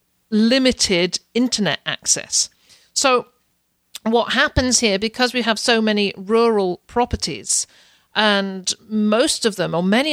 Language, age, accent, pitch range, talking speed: English, 50-69, British, 170-210 Hz, 120 wpm